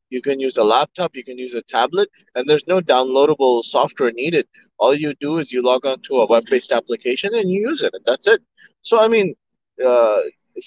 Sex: male